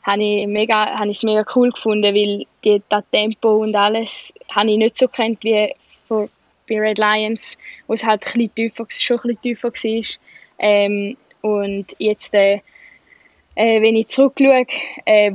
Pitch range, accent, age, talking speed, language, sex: 205-225 Hz, Swiss, 10-29, 160 wpm, German, female